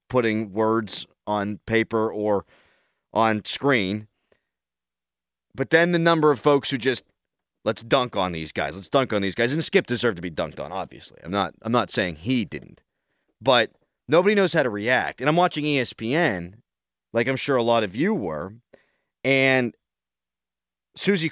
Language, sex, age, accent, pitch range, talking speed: English, male, 30-49, American, 95-135 Hz, 170 wpm